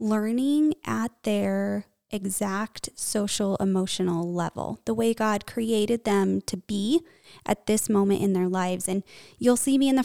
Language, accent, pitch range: English, American, 195-230 Hz